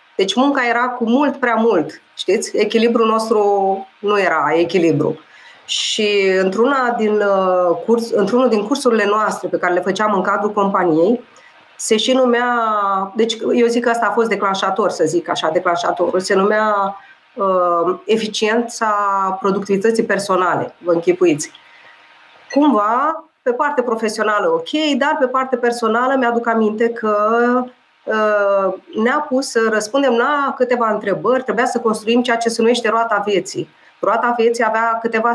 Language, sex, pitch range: Romanian, female, 195-235 Hz